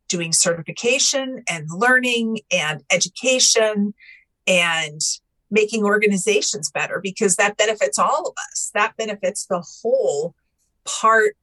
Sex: female